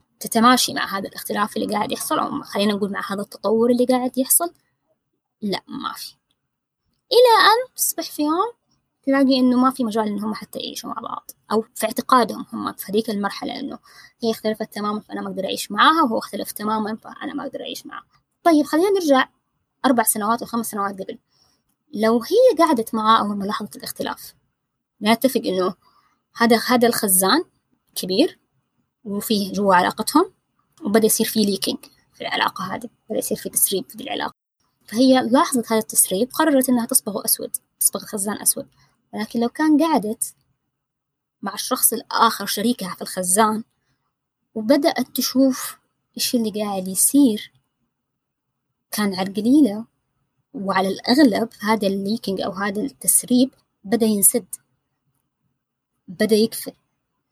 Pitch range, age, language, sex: 205-260 Hz, 20-39, Arabic, female